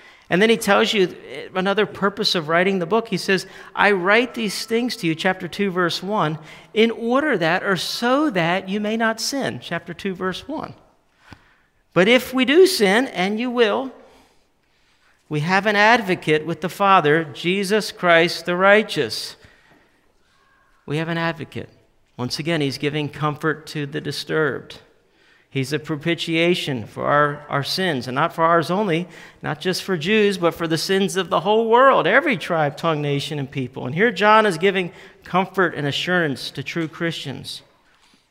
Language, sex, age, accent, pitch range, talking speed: English, male, 50-69, American, 150-205 Hz, 170 wpm